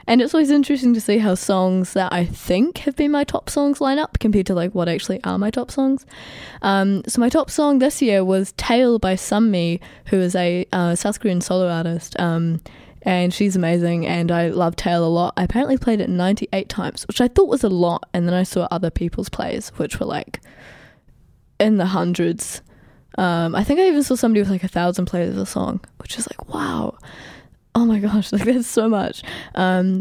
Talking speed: 215 wpm